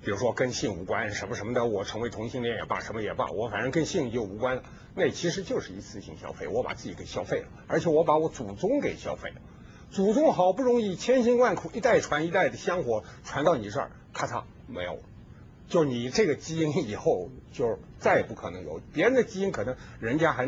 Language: Chinese